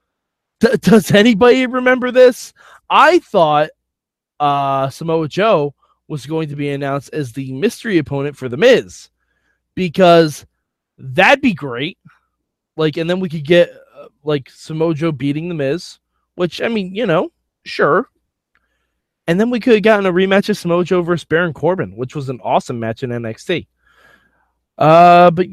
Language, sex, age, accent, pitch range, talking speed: English, male, 20-39, American, 130-185 Hz, 160 wpm